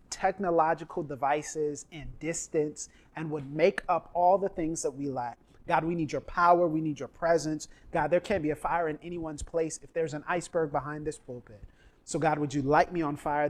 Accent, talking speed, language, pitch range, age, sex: American, 210 wpm, English, 145-185 Hz, 30-49, male